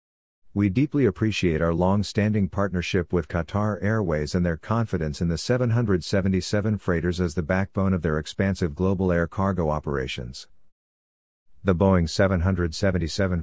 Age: 50-69